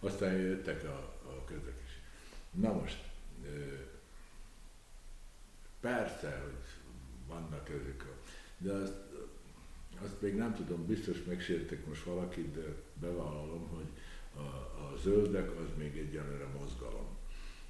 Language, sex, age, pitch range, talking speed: Hungarian, male, 60-79, 75-95 Hz, 110 wpm